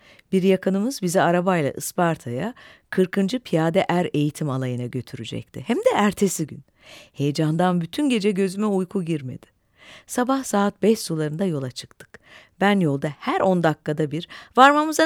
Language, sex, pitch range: Turkish, female, 145-200 Hz